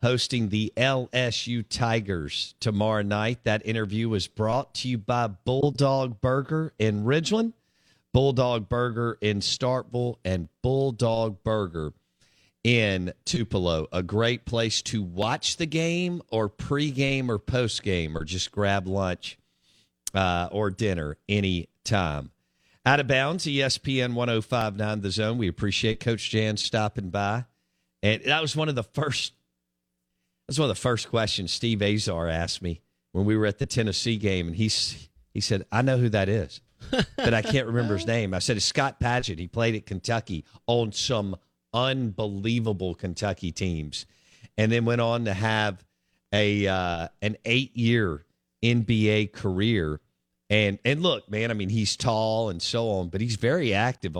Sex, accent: male, American